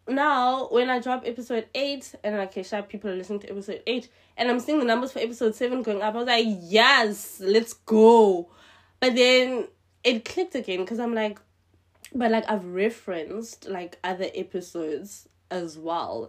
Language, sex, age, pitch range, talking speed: English, female, 20-39, 170-220 Hz, 180 wpm